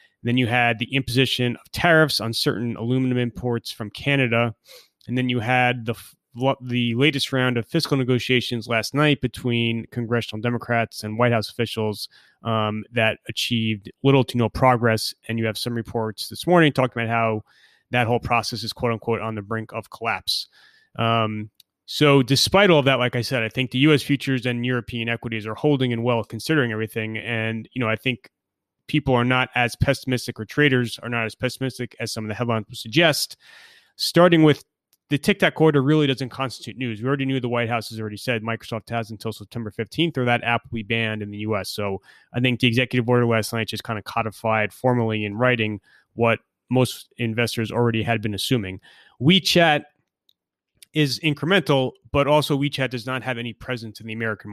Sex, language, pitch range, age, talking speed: male, English, 115-130 Hz, 30-49, 195 wpm